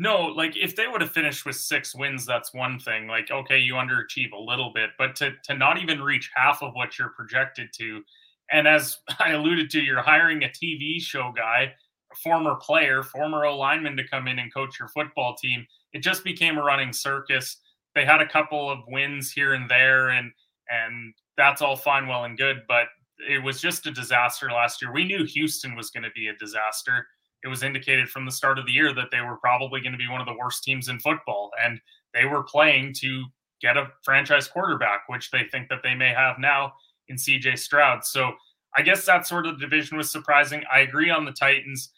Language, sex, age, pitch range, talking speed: English, male, 20-39, 125-150 Hz, 220 wpm